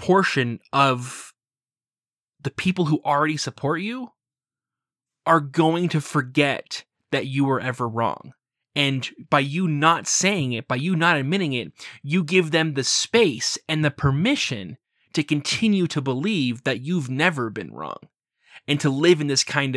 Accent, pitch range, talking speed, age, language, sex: American, 125-155 Hz, 155 wpm, 20-39, English, male